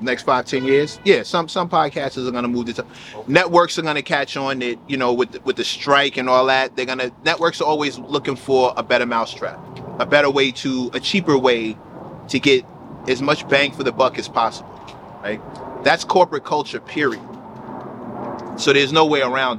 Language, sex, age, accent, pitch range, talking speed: English, male, 30-49, American, 120-155 Hz, 200 wpm